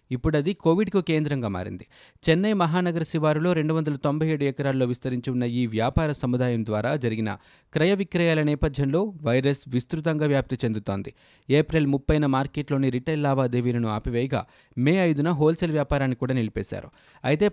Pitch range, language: 125-160 Hz, Telugu